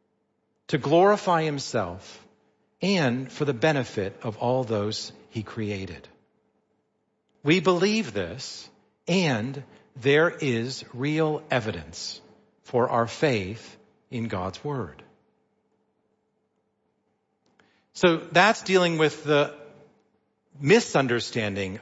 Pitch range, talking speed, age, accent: 115-165 Hz, 90 wpm, 50-69, American